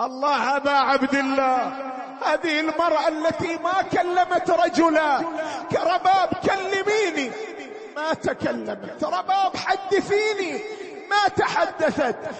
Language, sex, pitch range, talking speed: Arabic, male, 280-365 Hz, 85 wpm